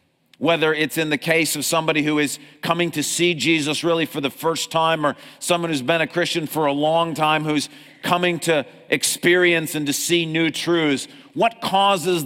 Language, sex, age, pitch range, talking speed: English, male, 40-59, 140-165 Hz, 190 wpm